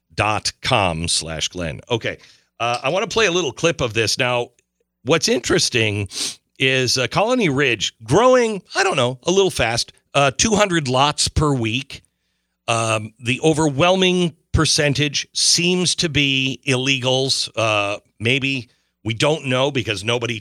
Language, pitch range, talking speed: English, 105-140 Hz, 145 wpm